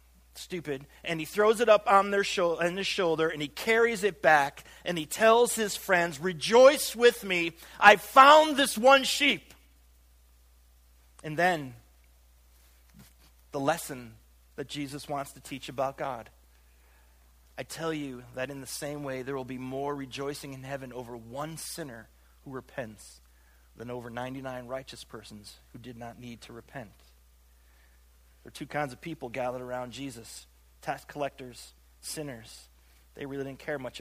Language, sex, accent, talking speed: English, male, American, 150 wpm